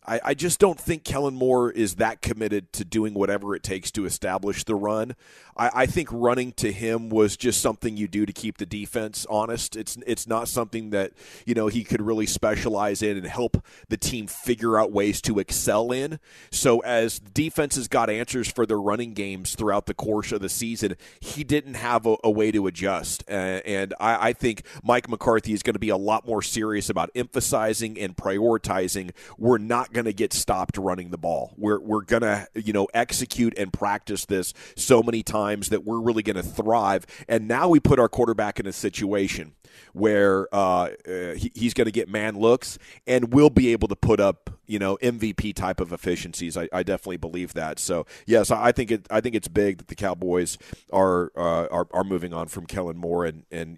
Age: 30-49